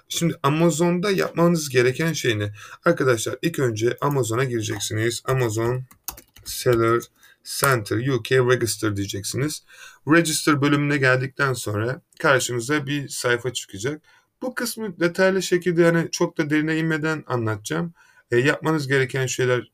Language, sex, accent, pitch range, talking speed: Turkish, male, native, 115-160 Hz, 115 wpm